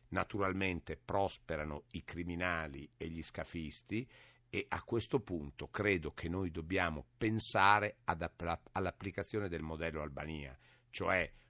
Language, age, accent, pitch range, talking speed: Italian, 60-79, native, 85-115 Hz, 120 wpm